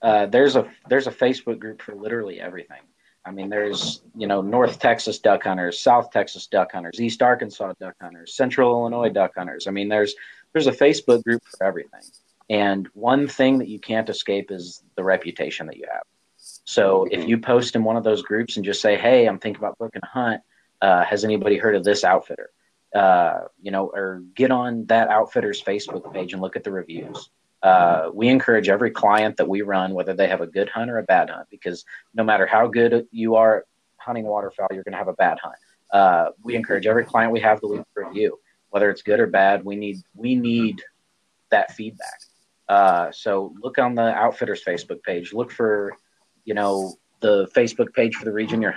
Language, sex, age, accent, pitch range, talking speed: English, male, 30-49, American, 95-120 Hz, 210 wpm